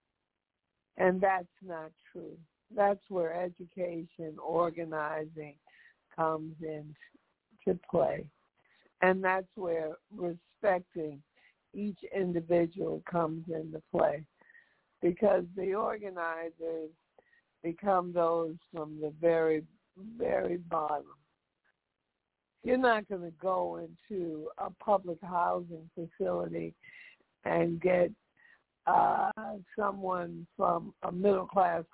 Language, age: English, 60-79